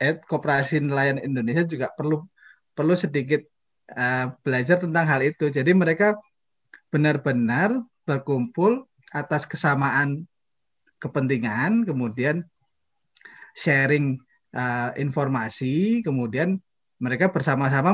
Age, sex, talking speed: 20-39, male, 85 wpm